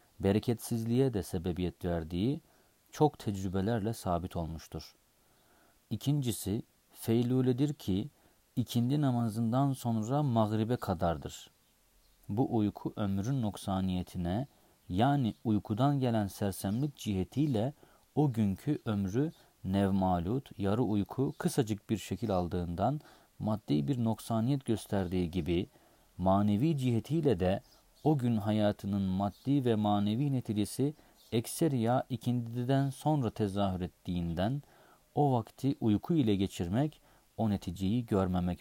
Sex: male